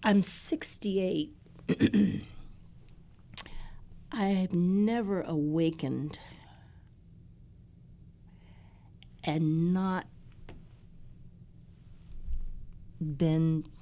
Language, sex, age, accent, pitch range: English, female, 50-69, American, 140-180 Hz